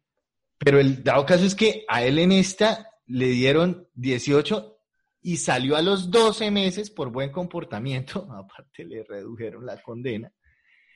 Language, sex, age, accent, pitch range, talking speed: Spanish, male, 30-49, Colombian, 135-190 Hz, 150 wpm